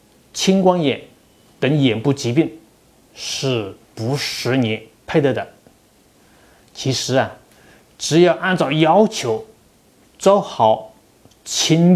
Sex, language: male, Chinese